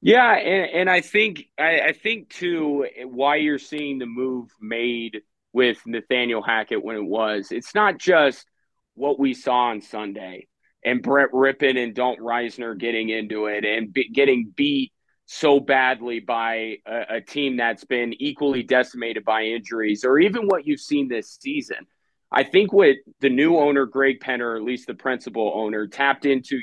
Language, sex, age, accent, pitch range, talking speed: English, male, 30-49, American, 120-145 Hz, 170 wpm